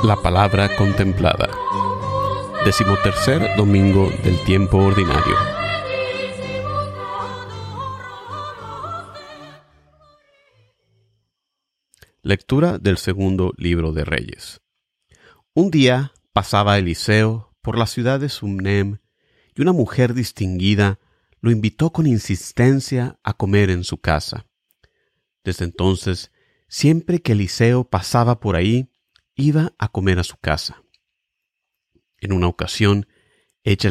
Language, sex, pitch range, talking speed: Spanish, male, 95-130 Hz, 95 wpm